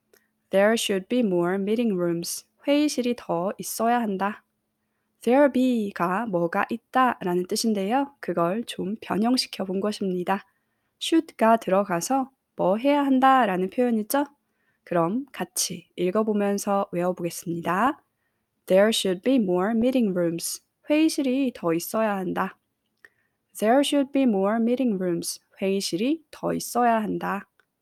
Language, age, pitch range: Korean, 20-39, 185-250 Hz